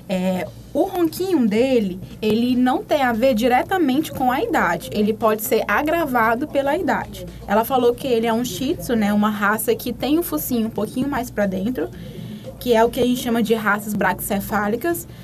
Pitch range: 225-300 Hz